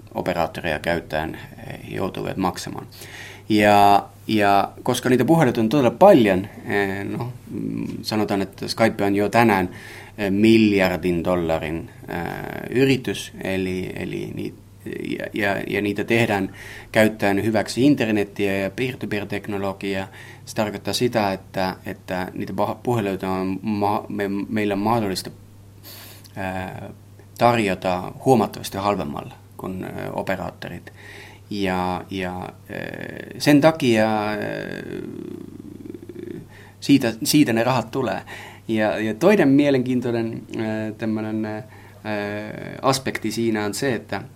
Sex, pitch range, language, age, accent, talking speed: male, 100-110 Hz, Finnish, 30-49, native, 85 wpm